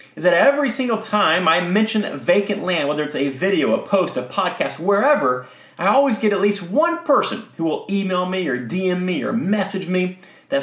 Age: 30-49